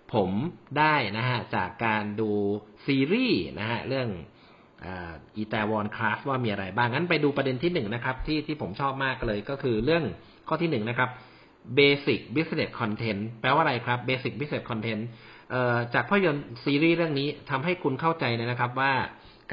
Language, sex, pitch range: Thai, male, 115-145 Hz